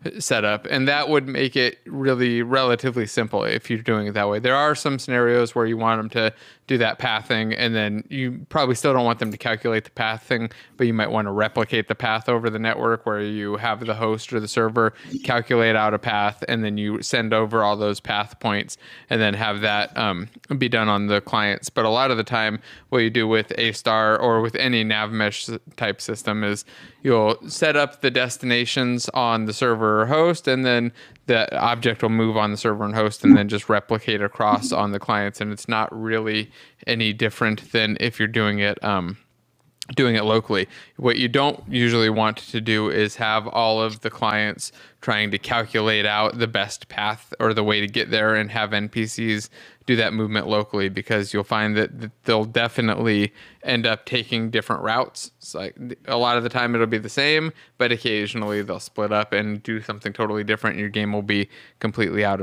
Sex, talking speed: male, 210 wpm